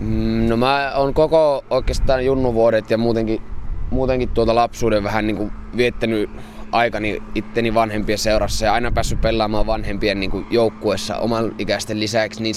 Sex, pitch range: male, 105-115 Hz